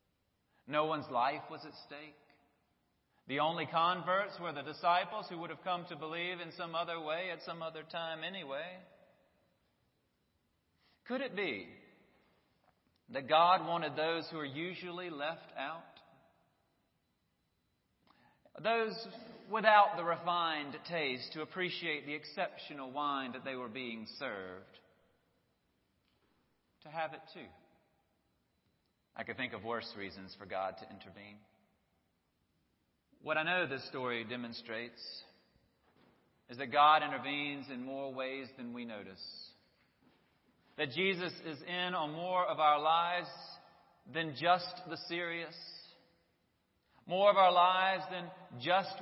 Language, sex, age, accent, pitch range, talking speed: English, male, 40-59, American, 145-185 Hz, 125 wpm